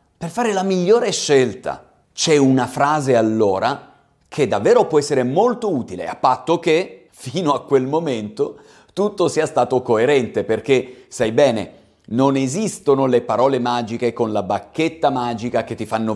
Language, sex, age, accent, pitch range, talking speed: Italian, male, 40-59, native, 125-200 Hz, 150 wpm